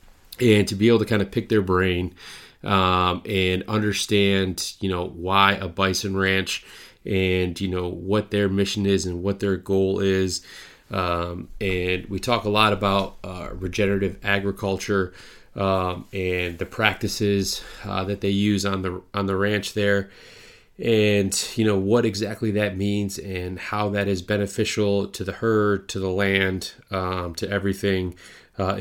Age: 30-49